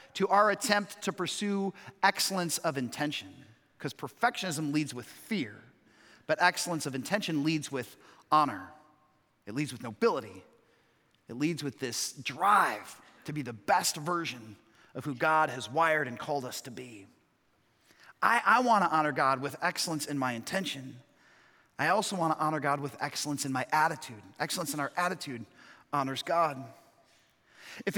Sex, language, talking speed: male, English, 155 wpm